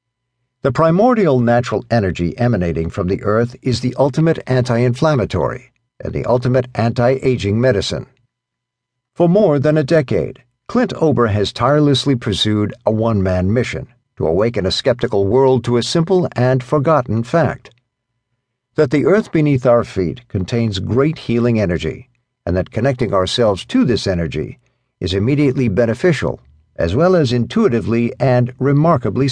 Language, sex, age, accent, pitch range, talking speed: English, male, 60-79, American, 115-135 Hz, 135 wpm